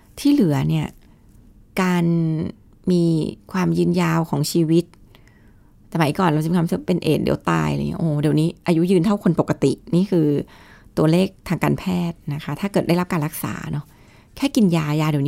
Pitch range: 150-190 Hz